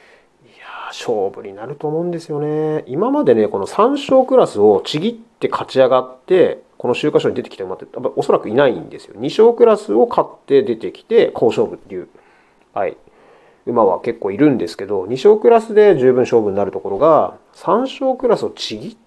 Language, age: Japanese, 30-49